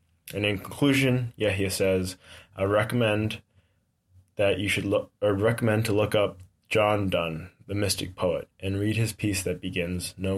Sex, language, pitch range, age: male, English, 95-110 Hz, 20-39